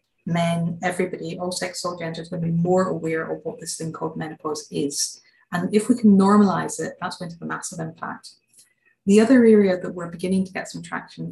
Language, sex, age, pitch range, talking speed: English, female, 30-49, 155-185 Hz, 210 wpm